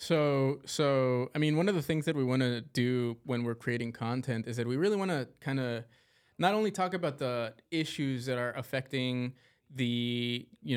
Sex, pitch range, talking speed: male, 120-145 Hz, 200 wpm